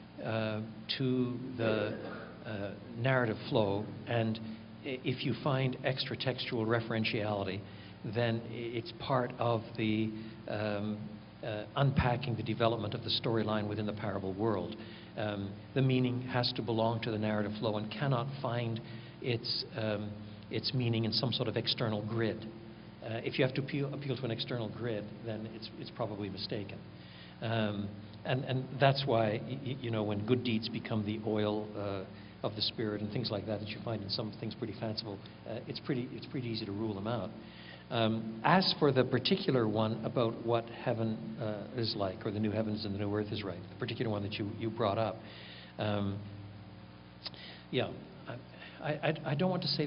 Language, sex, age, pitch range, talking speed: English, male, 60-79, 105-120 Hz, 175 wpm